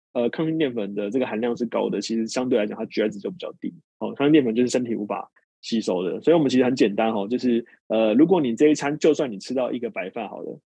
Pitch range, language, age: 110-150 Hz, Chinese, 20-39